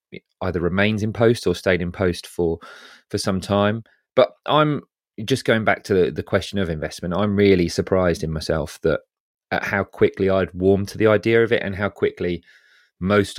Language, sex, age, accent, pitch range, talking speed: English, male, 30-49, British, 85-100 Hz, 195 wpm